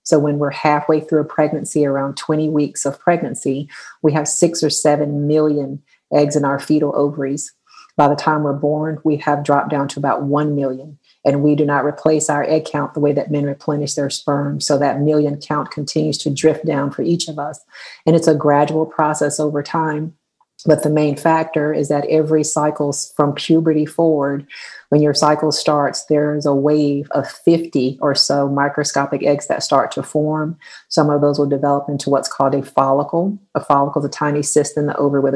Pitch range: 140-150 Hz